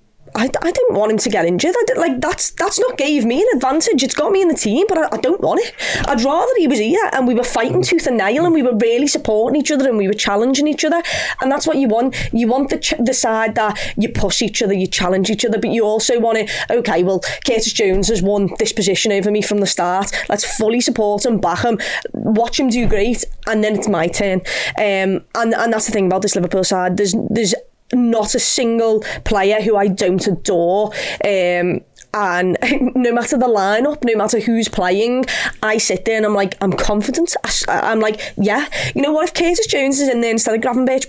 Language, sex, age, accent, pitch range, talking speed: English, female, 20-39, British, 195-250 Hz, 235 wpm